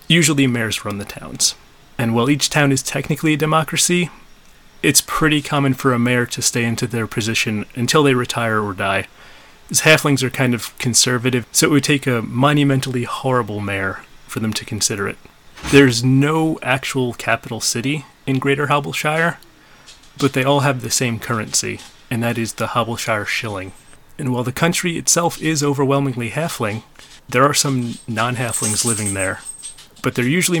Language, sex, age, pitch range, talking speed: English, male, 30-49, 115-145 Hz, 170 wpm